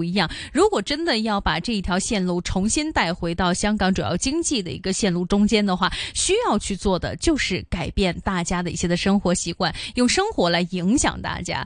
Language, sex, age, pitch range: Chinese, female, 20-39, 185-255 Hz